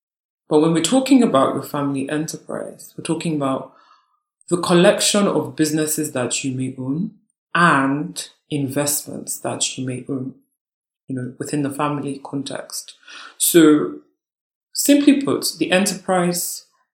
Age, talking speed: 20-39, 130 wpm